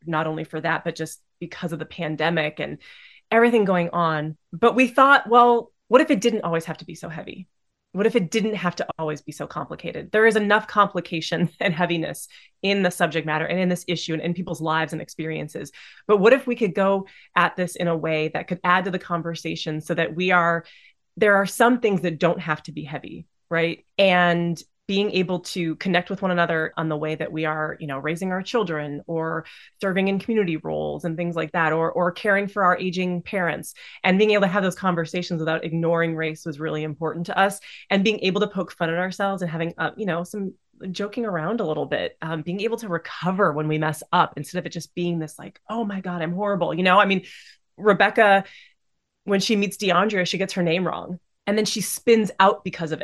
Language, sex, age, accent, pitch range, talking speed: English, female, 30-49, American, 165-200 Hz, 225 wpm